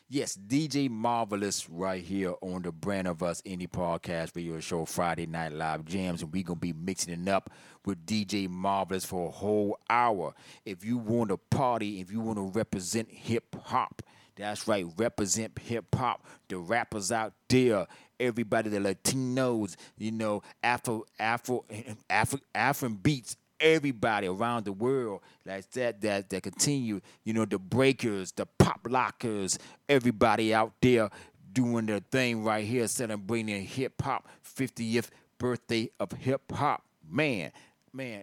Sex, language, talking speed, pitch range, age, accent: male, English, 150 wpm, 95-120 Hz, 30-49, American